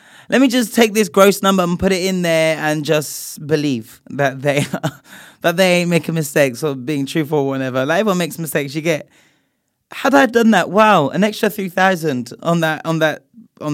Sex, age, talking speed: male, 20-39, 205 wpm